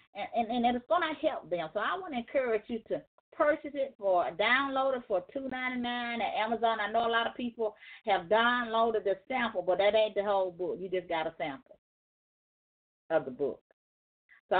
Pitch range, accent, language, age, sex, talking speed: 180-235 Hz, American, English, 40-59, female, 200 wpm